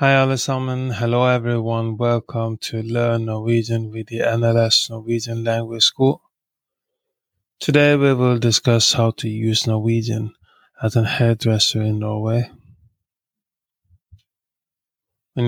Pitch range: 110-125 Hz